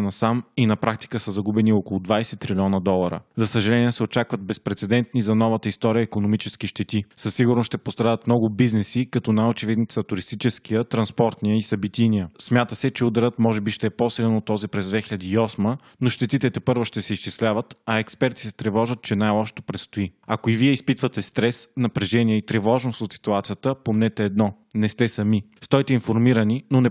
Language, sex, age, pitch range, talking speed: Bulgarian, male, 20-39, 105-125 Hz, 175 wpm